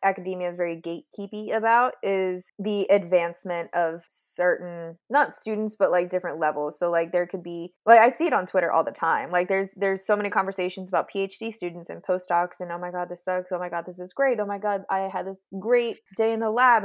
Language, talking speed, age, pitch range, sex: English, 230 wpm, 20-39, 175-200 Hz, female